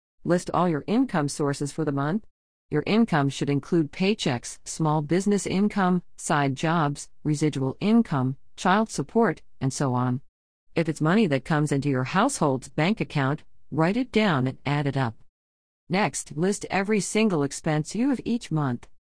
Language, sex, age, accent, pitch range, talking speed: English, female, 50-69, American, 140-180 Hz, 160 wpm